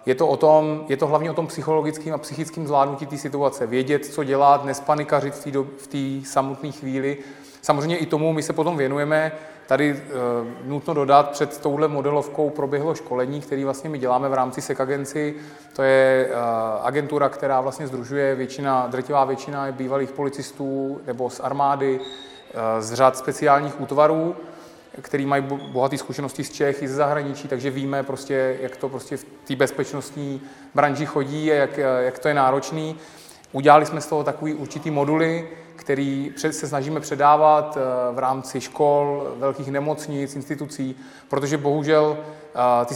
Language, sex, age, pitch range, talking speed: Czech, male, 30-49, 135-150 Hz, 155 wpm